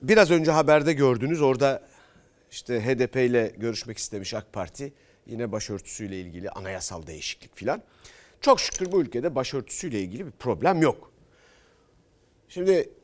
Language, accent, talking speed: Turkish, native, 130 wpm